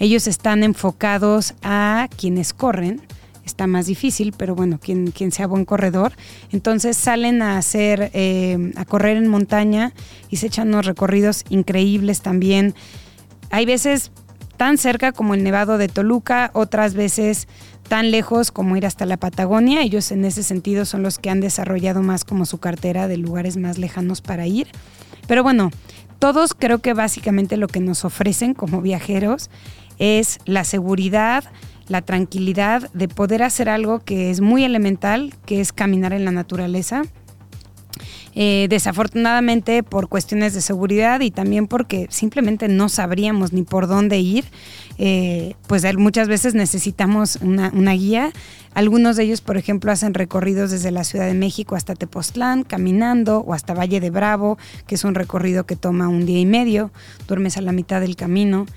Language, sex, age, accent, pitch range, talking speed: Spanish, female, 20-39, Mexican, 185-215 Hz, 160 wpm